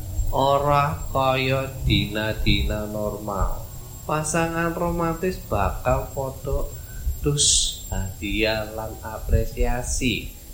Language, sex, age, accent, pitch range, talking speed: Indonesian, male, 20-39, native, 80-120 Hz, 70 wpm